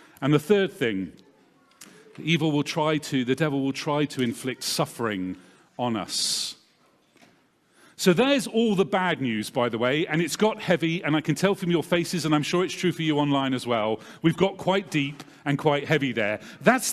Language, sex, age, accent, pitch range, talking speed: English, male, 40-59, British, 145-200 Hz, 200 wpm